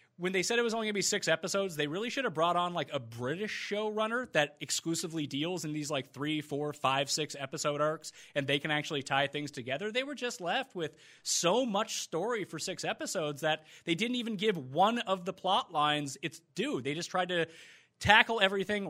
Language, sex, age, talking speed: English, male, 30-49, 220 wpm